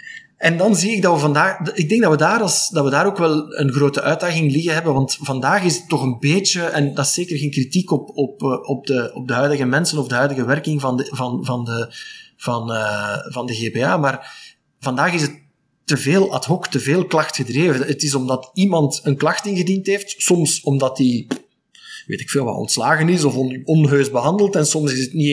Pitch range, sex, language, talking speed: 130-165 Hz, male, Dutch, 200 wpm